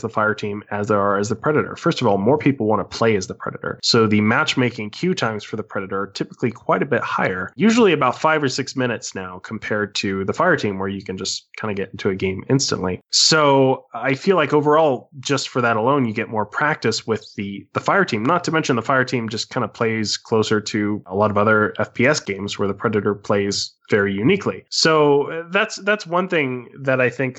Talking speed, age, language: 235 wpm, 20-39, English